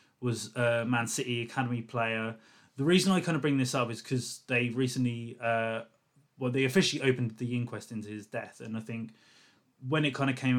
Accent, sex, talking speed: British, male, 205 wpm